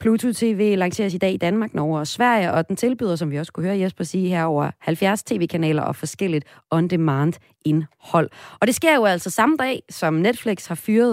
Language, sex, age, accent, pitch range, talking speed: Danish, female, 30-49, native, 155-200 Hz, 200 wpm